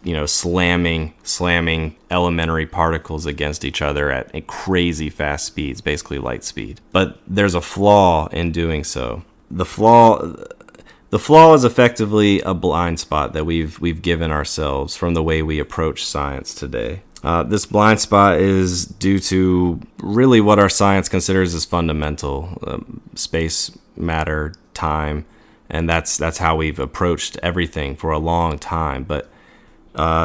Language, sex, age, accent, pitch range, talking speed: English, male, 30-49, American, 80-90 Hz, 150 wpm